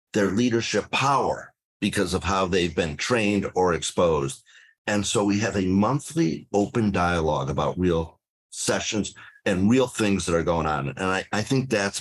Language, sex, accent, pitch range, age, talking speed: English, male, American, 85-115 Hz, 50-69, 170 wpm